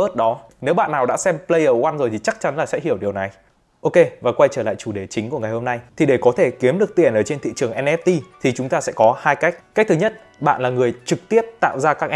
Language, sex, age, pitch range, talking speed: Vietnamese, male, 20-39, 130-185 Hz, 290 wpm